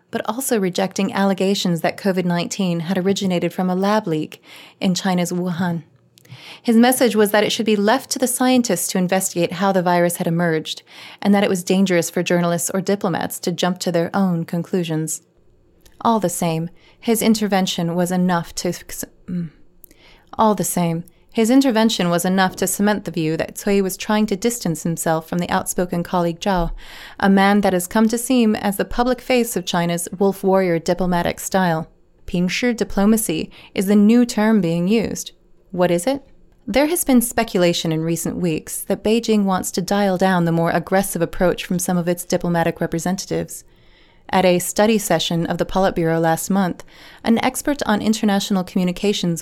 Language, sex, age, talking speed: English, female, 30-49, 175 wpm